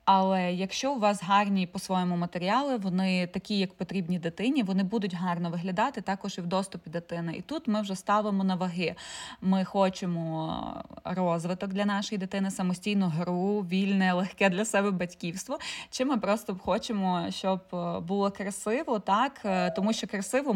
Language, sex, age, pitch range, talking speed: Ukrainian, female, 20-39, 180-210 Hz, 150 wpm